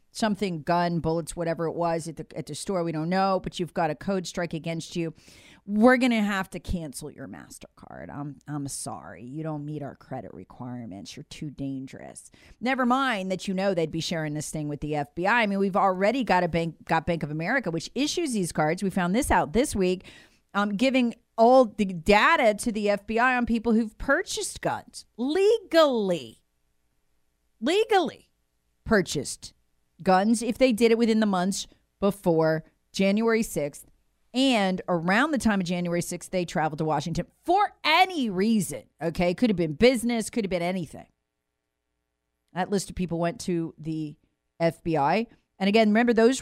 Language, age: English, 40-59